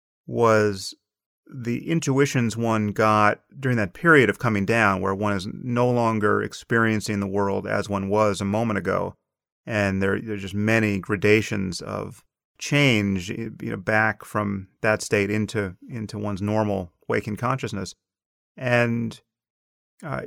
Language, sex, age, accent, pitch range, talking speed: English, male, 30-49, American, 100-115 Hz, 140 wpm